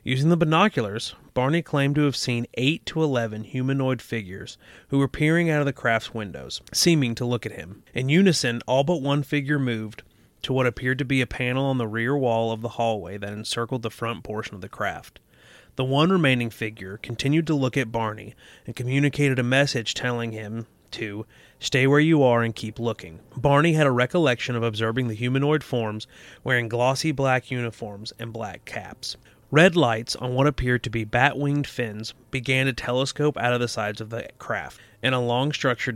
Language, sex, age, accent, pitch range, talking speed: English, male, 30-49, American, 115-135 Hz, 195 wpm